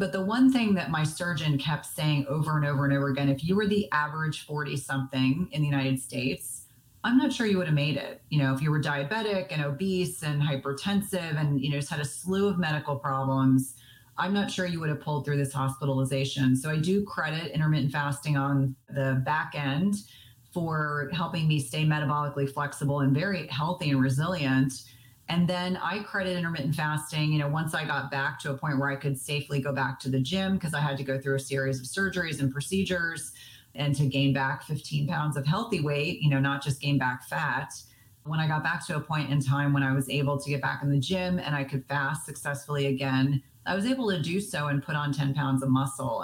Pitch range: 135-155 Hz